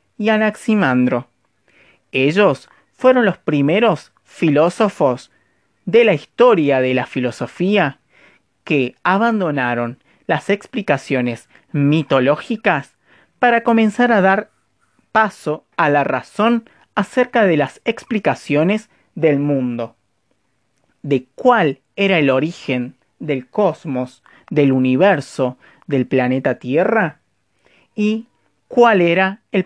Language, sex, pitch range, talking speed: Spanish, male, 130-200 Hz, 95 wpm